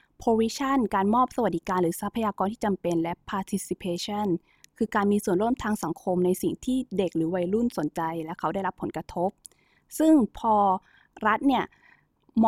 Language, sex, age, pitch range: Thai, female, 20-39, 185-235 Hz